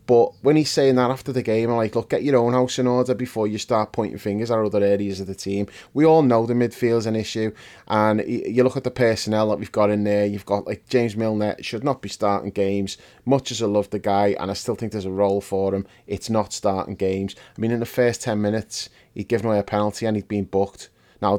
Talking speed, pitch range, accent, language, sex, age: 260 wpm, 105-120 Hz, British, English, male, 20-39